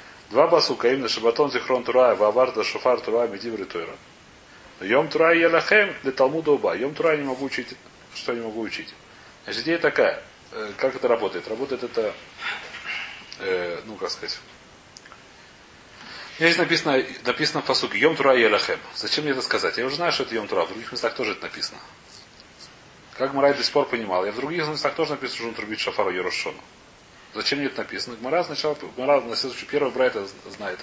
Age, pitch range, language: 30-49, 130-170 Hz, Russian